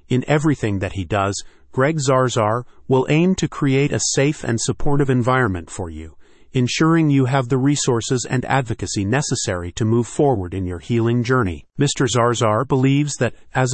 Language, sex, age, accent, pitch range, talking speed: English, male, 40-59, American, 110-140 Hz, 165 wpm